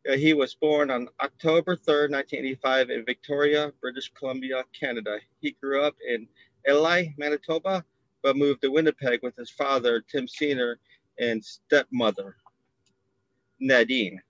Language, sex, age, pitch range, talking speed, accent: English, male, 30-49, 125-150 Hz, 125 wpm, American